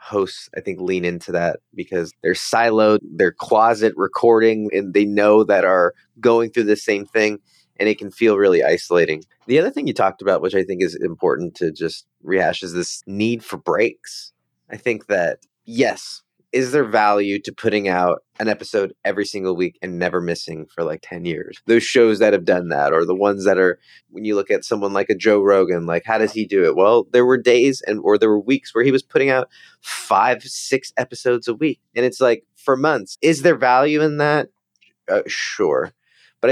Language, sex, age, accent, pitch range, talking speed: English, male, 30-49, American, 95-130 Hz, 210 wpm